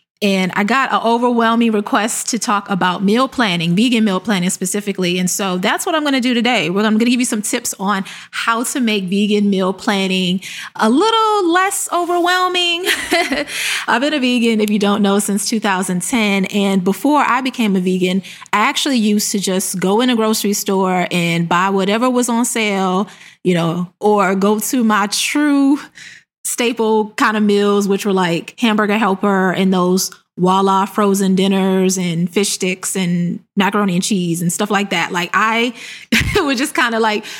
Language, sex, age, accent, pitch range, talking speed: English, female, 20-39, American, 190-240 Hz, 185 wpm